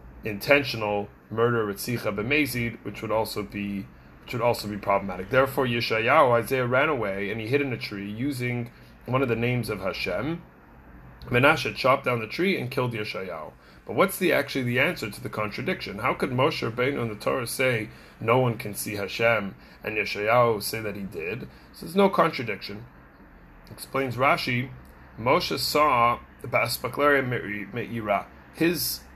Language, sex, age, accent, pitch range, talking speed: English, male, 30-49, American, 100-130 Hz, 165 wpm